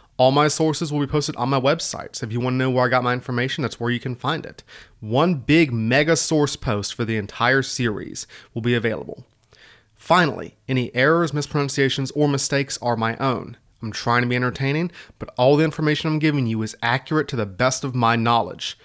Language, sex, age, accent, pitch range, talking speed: English, male, 30-49, American, 115-150 Hz, 215 wpm